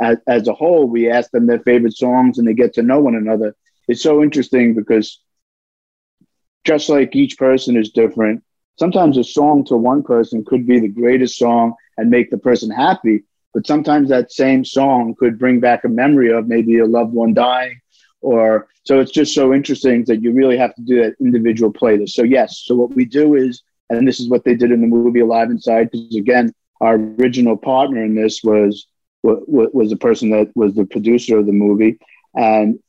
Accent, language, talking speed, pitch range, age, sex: American, English, 200 wpm, 115-130 Hz, 50-69, male